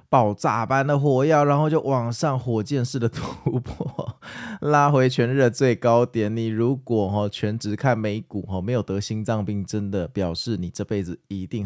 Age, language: 20-39, Chinese